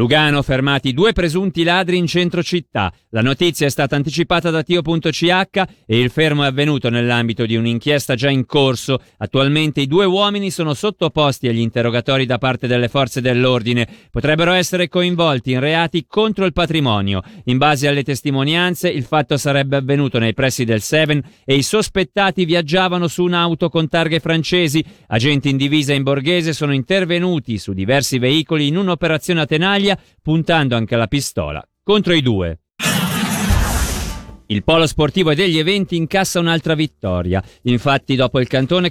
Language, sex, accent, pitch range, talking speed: Italian, male, native, 130-180 Hz, 155 wpm